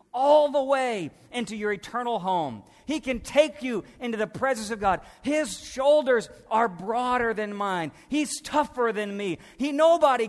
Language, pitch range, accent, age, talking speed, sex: English, 155-230 Hz, American, 40-59, 165 wpm, male